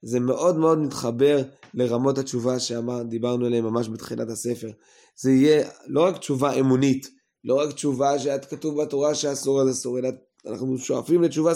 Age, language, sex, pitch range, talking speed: 20-39, Hebrew, male, 115-145 Hz, 155 wpm